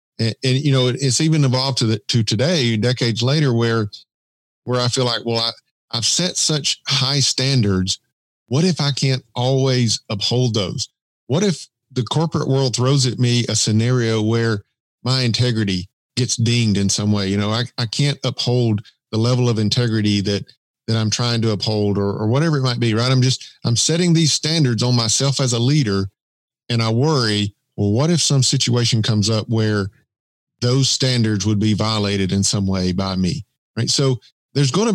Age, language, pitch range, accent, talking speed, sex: 50-69, English, 110-135 Hz, American, 190 wpm, male